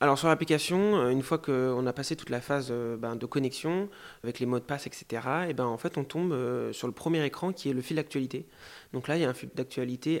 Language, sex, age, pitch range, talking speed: French, male, 30-49, 125-155 Hz, 245 wpm